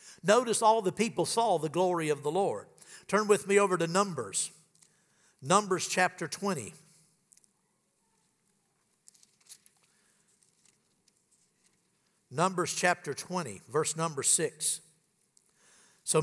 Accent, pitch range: American, 160-195 Hz